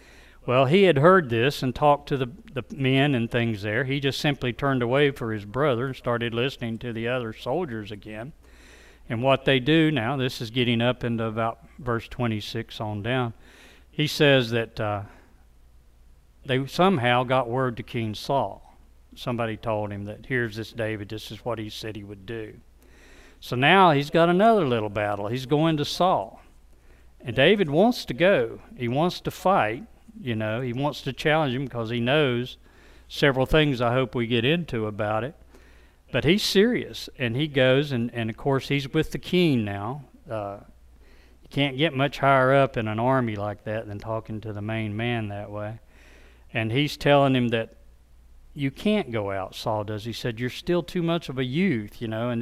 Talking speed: 190 wpm